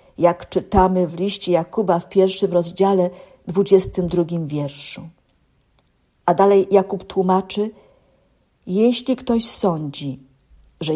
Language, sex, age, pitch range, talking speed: Polish, female, 50-69, 175-225 Hz, 100 wpm